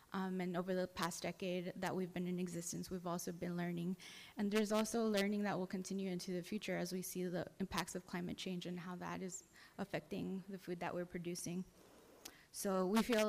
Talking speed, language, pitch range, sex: 210 wpm, English, 180-210 Hz, female